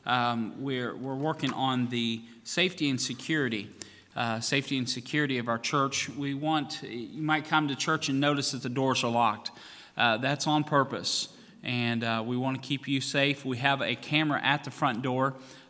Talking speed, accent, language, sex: 190 wpm, American, English, male